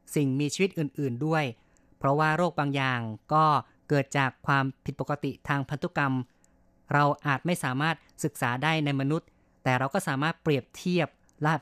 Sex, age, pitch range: female, 30-49, 135-155 Hz